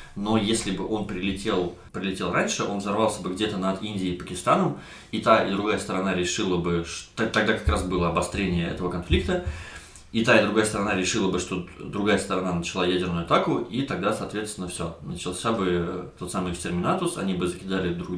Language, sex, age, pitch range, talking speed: Russian, male, 20-39, 90-110 Hz, 180 wpm